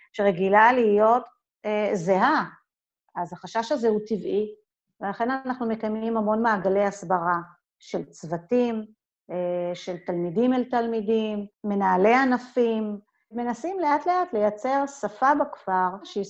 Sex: female